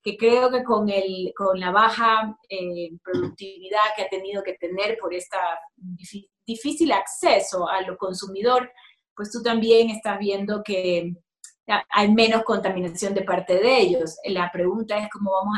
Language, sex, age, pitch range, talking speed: Spanish, female, 30-49, 190-240 Hz, 150 wpm